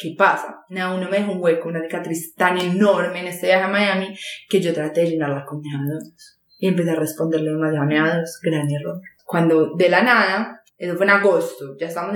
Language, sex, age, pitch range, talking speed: Spanish, female, 20-39, 170-210 Hz, 225 wpm